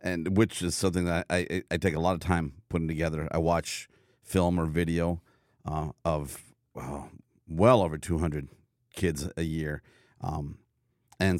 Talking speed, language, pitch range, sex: 165 wpm, English, 80-100 Hz, male